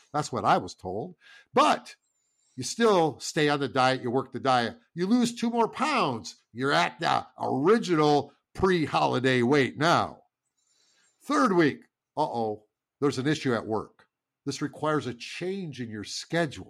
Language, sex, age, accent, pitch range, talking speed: English, male, 50-69, American, 130-180 Hz, 155 wpm